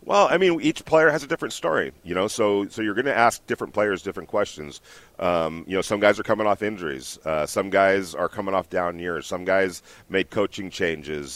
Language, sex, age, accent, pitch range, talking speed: English, male, 40-59, American, 85-105 Hz, 220 wpm